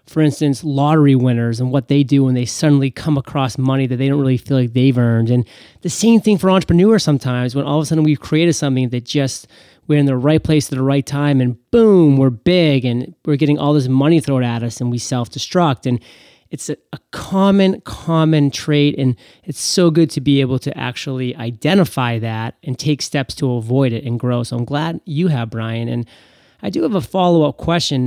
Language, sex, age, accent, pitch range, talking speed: English, male, 30-49, American, 130-160 Hz, 220 wpm